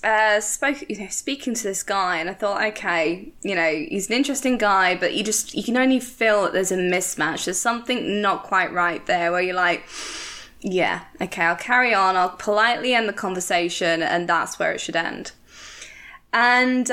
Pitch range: 195-260 Hz